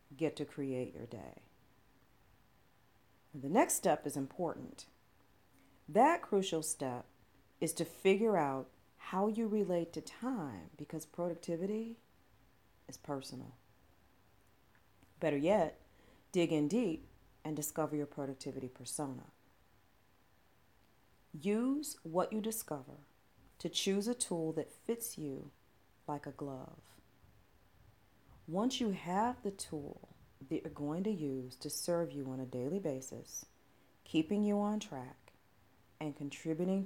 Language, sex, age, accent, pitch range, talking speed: English, female, 40-59, American, 130-175 Hz, 120 wpm